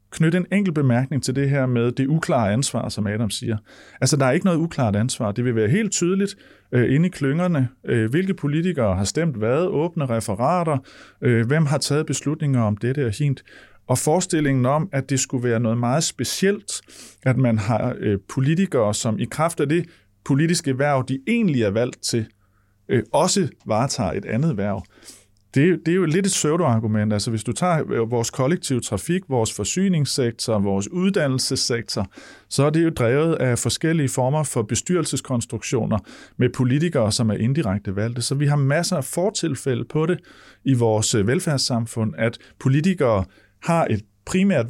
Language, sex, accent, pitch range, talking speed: Danish, male, native, 115-155 Hz, 175 wpm